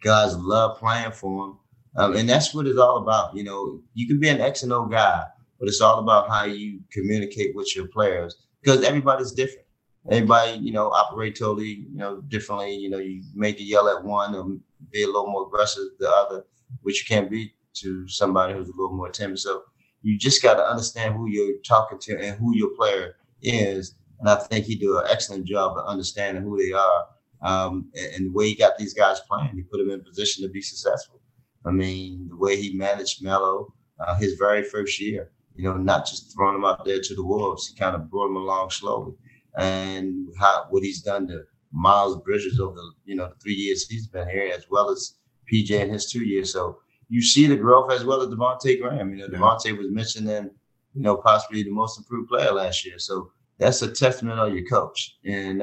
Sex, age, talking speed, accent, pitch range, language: male, 30-49, 220 wpm, American, 95-120 Hz, English